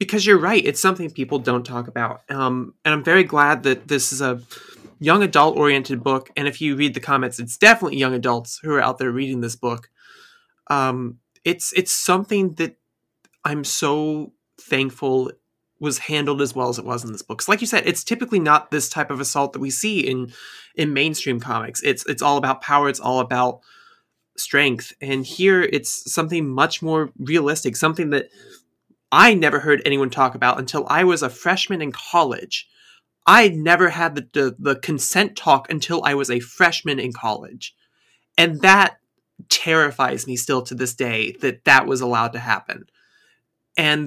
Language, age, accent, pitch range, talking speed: English, 20-39, American, 125-160 Hz, 180 wpm